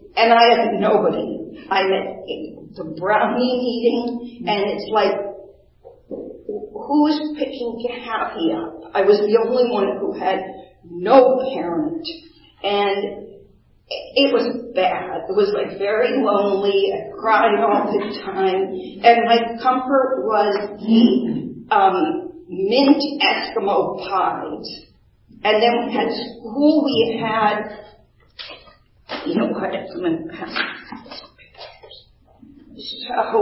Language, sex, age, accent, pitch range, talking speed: English, female, 40-59, American, 205-290 Hz, 105 wpm